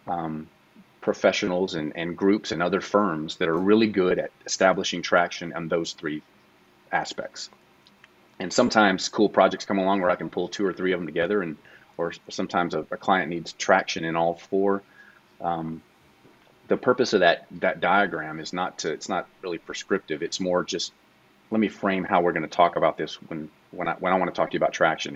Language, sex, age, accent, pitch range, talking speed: English, male, 30-49, American, 80-100 Hz, 205 wpm